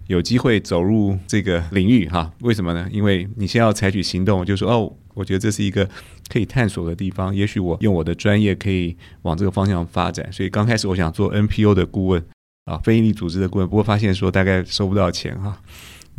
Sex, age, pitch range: male, 30-49, 90-110 Hz